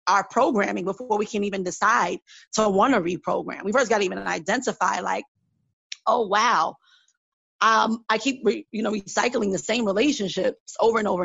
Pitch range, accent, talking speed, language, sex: 190-225 Hz, American, 175 wpm, English, female